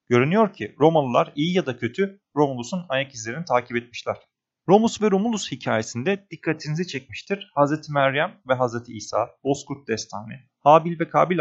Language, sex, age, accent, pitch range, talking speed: Turkish, male, 40-59, native, 125-175 Hz, 145 wpm